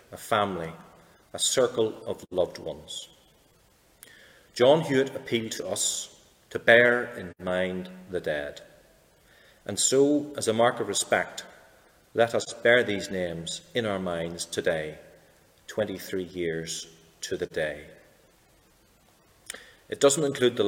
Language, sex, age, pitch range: English, male, 40-59, 90-120 Hz